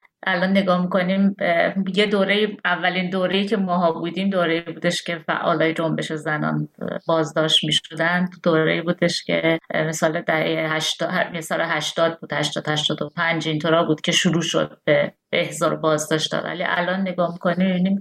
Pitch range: 160-195 Hz